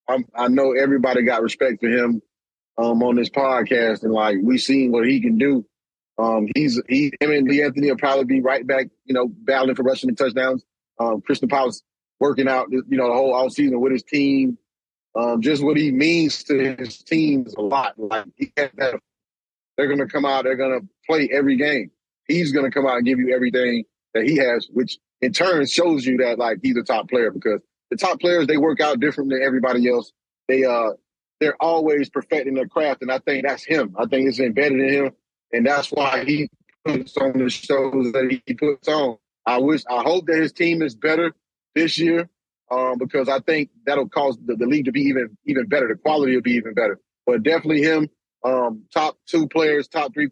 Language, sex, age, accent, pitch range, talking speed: English, male, 30-49, American, 125-150 Hz, 210 wpm